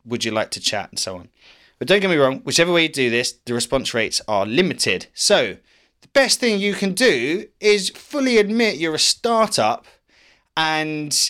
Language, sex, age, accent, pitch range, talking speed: English, male, 20-39, British, 115-170 Hz, 195 wpm